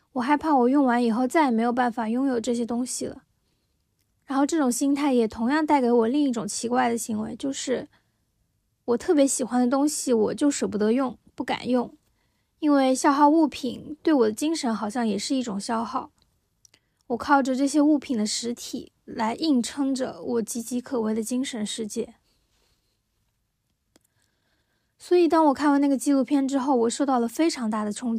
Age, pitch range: 20-39, 235-280 Hz